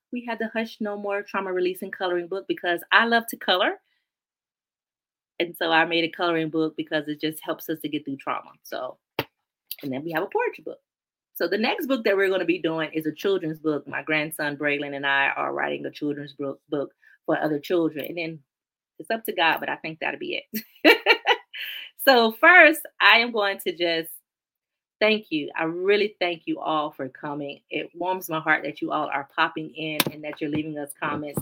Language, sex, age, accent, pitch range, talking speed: English, female, 30-49, American, 155-215 Hz, 210 wpm